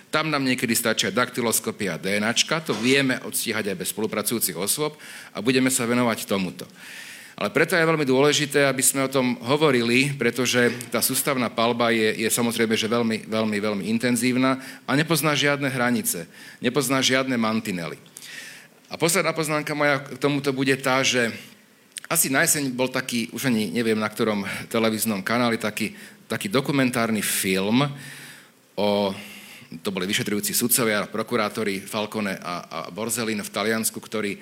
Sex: male